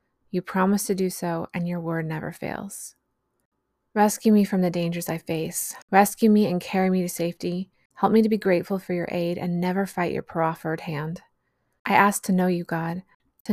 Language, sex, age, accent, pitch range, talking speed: English, female, 20-39, American, 170-195 Hz, 200 wpm